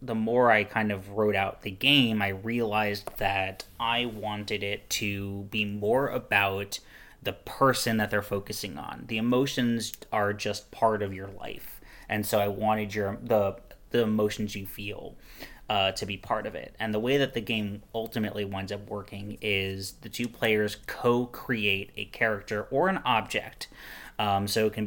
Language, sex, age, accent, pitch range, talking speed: English, male, 30-49, American, 100-115 Hz, 175 wpm